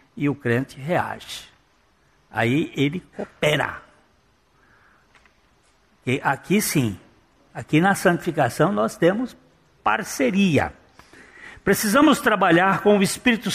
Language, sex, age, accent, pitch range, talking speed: Portuguese, male, 60-79, Brazilian, 140-200 Hz, 95 wpm